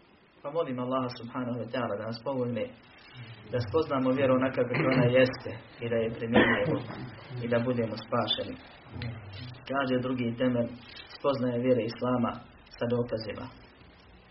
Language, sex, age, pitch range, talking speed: Croatian, male, 30-49, 120-130 Hz, 135 wpm